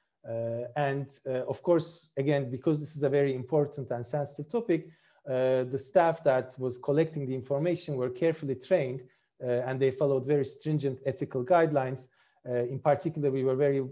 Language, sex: English, male